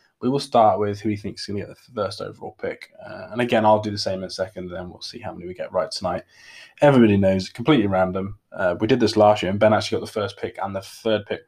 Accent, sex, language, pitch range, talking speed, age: British, male, English, 100-120 Hz, 290 wpm, 20-39